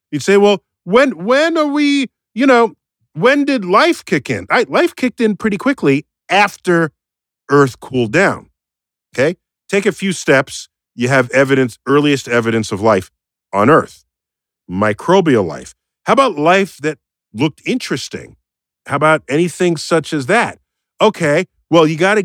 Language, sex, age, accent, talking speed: English, male, 50-69, American, 155 wpm